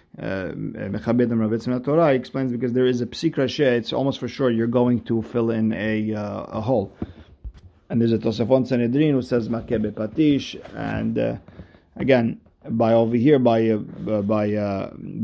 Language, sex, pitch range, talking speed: English, male, 110-130 Hz, 160 wpm